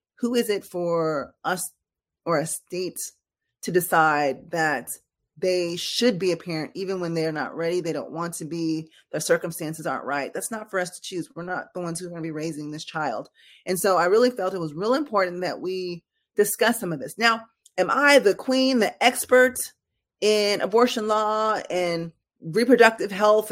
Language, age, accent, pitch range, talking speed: English, 20-39, American, 175-215 Hz, 195 wpm